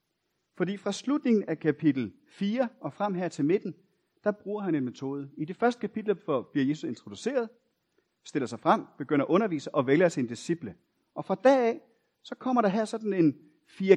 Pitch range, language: 150-215 Hz, Danish